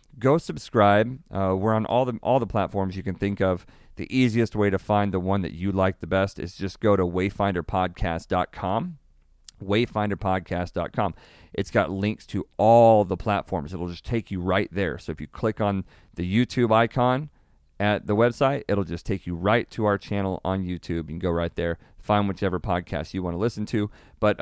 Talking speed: 195 wpm